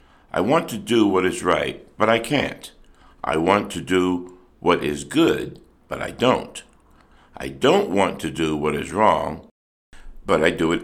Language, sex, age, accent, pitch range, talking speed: English, male, 60-79, American, 75-110 Hz, 175 wpm